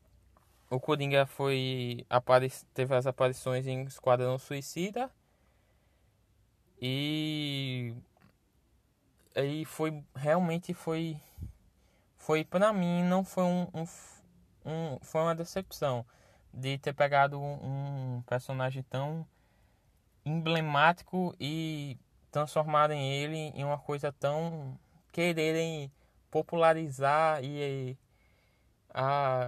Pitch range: 125-155 Hz